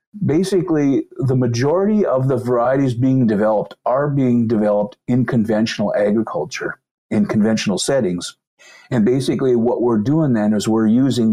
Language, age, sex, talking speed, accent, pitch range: English, 50-69, male, 140 wpm, American, 110-135 Hz